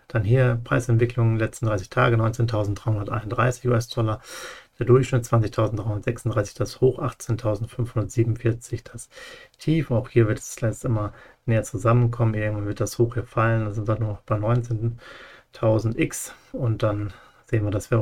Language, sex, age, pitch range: German, male, 40-59, 110-120 Hz